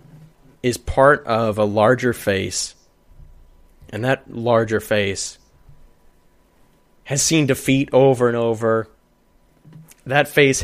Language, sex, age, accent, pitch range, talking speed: English, male, 30-49, American, 110-155 Hz, 100 wpm